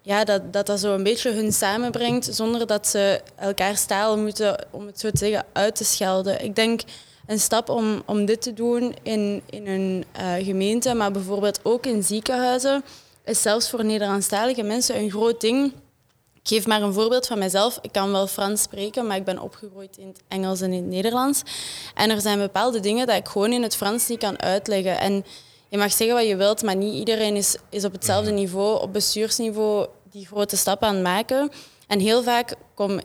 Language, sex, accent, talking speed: Dutch, female, Dutch, 205 wpm